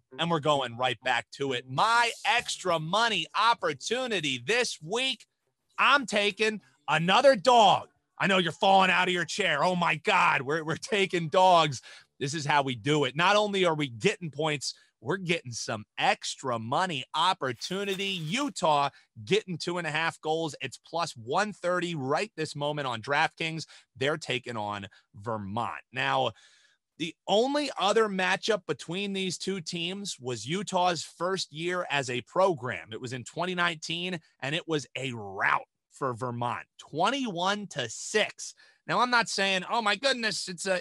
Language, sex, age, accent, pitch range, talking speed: English, male, 30-49, American, 130-195 Hz, 160 wpm